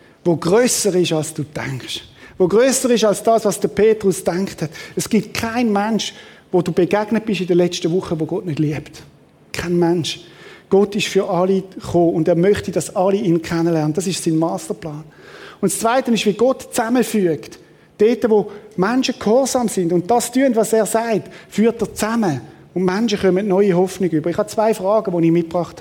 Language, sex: German, male